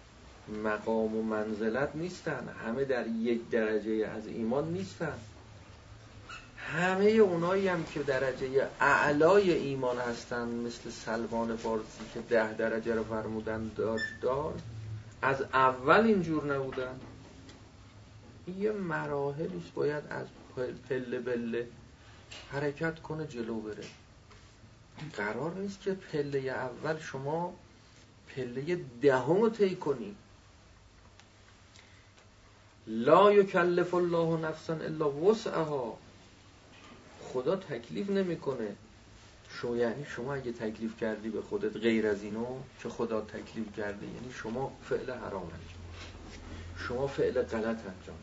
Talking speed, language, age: 110 wpm, Persian, 40-59